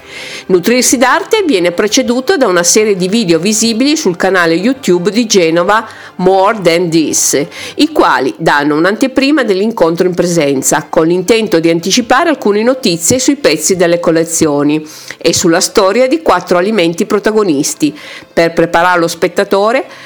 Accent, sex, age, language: native, female, 50-69, Italian